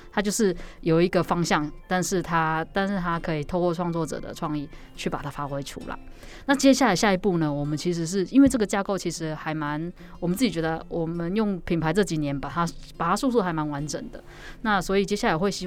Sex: female